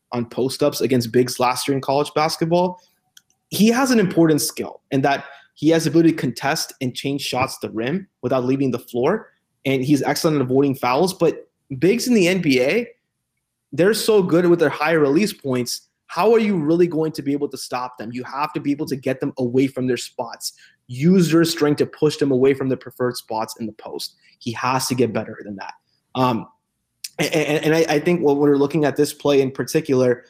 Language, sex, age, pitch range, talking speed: English, male, 20-39, 130-160 Hz, 220 wpm